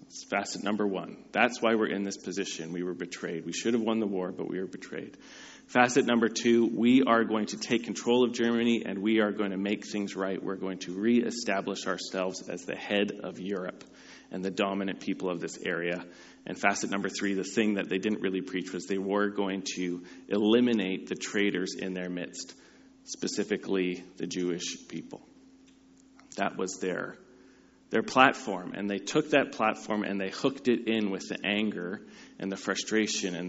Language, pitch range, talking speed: English, 95-115 Hz, 190 wpm